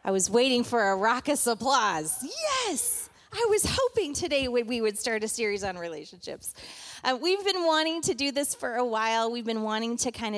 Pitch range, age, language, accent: 205-265 Hz, 30-49, English, American